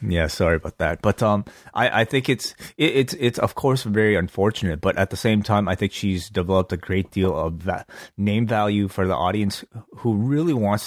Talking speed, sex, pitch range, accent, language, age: 220 wpm, male, 90-110 Hz, American, English, 30-49